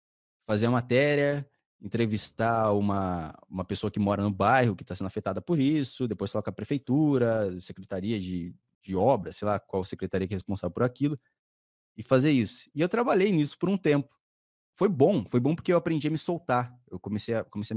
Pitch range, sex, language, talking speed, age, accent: 100-140 Hz, male, Portuguese, 200 wpm, 20-39, Brazilian